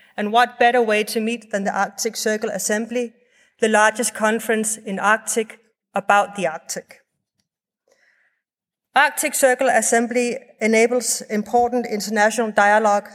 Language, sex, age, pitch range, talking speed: English, female, 30-49, 200-240 Hz, 120 wpm